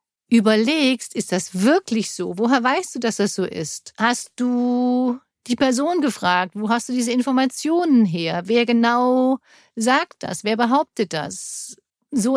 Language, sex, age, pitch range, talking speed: German, female, 50-69, 215-270 Hz, 150 wpm